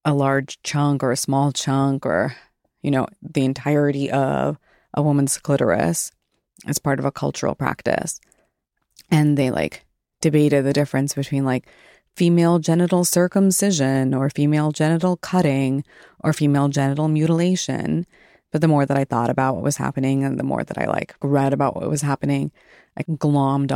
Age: 30-49